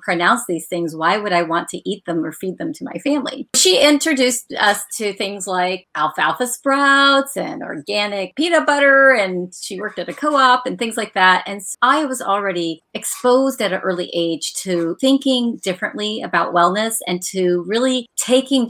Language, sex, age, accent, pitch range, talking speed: English, female, 40-59, American, 170-230 Hz, 185 wpm